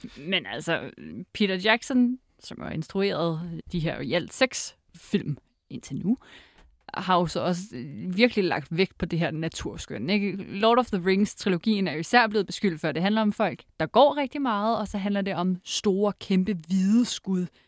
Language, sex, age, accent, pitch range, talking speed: Danish, female, 30-49, native, 170-215 Hz, 180 wpm